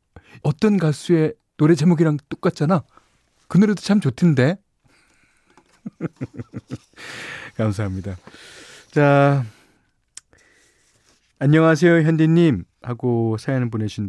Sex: male